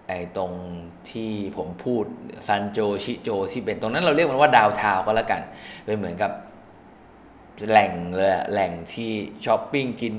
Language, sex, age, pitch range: Thai, male, 20-39, 95-115 Hz